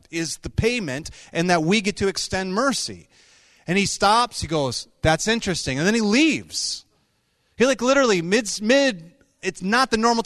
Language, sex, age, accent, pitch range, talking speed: English, male, 30-49, American, 160-230 Hz, 175 wpm